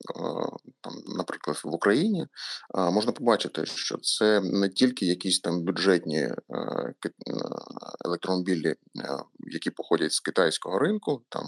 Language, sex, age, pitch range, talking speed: Ukrainian, male, 30-49, 90-110 Hz, 105 wpm